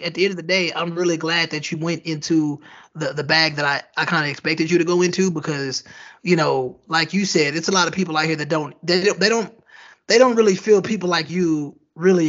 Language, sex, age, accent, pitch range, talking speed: English, male, 20-39, American, 150-180 Hz, 255 wpm